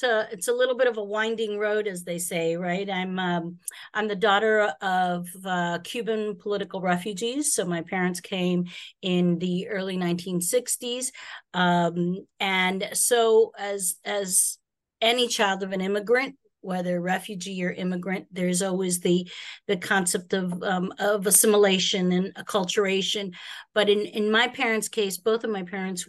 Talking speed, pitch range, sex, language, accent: 150 wpm, 180-225 Hz, female, English, American